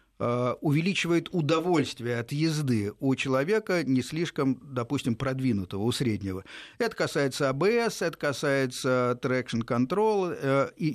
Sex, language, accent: male, Russian, native